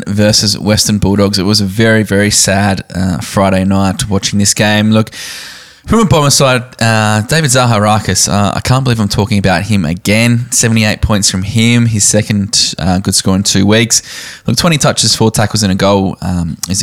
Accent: Australian